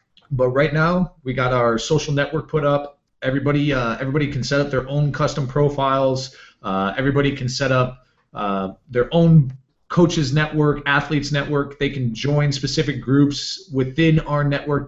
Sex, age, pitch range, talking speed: male, 30-49, 125-145 Hz, 160 wpm